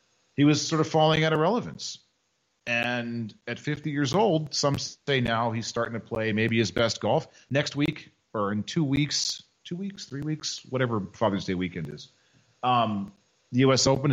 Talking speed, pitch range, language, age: 185 wpm, 105-135 Hz, English, 40-59